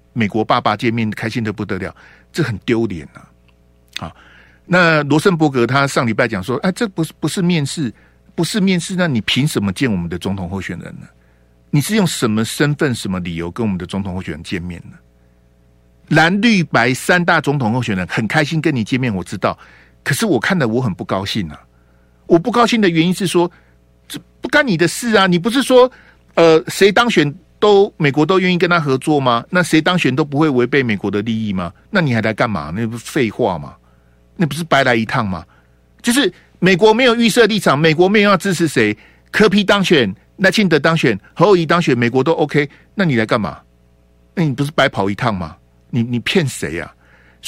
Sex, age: male, 50-69